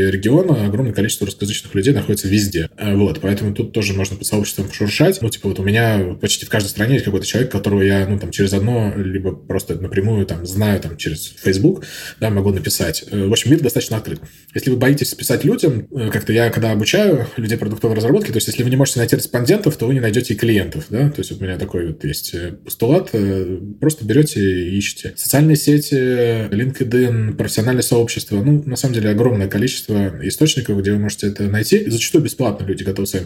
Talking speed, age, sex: 200 wpm, 20-39, male